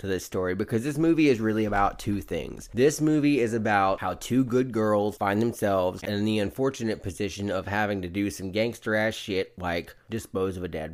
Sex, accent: male, American